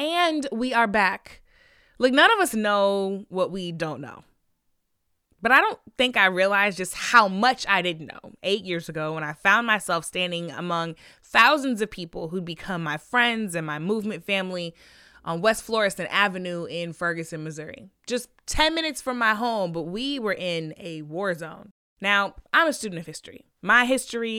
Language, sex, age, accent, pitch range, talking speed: English, female, 20-39, American, 185-260 Hz, 180 wpm